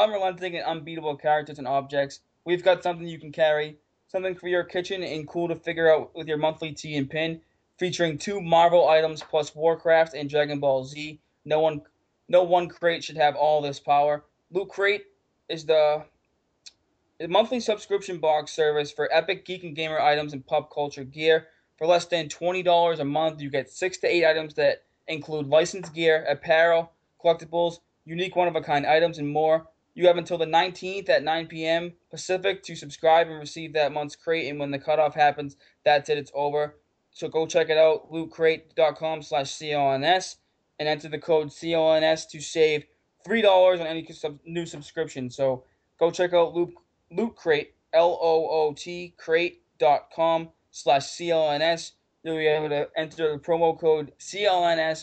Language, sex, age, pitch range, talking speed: English, male, 20-39, 150-170 Hz, 165 wpm